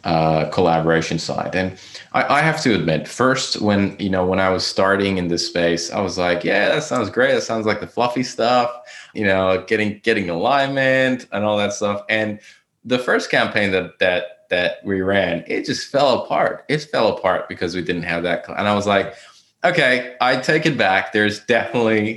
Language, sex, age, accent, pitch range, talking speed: English, male, 20-39, American, 95-120 Hz, 200 wpm